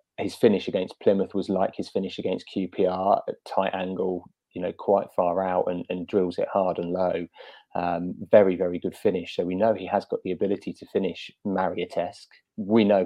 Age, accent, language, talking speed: 20-39, British, English, 200 wpm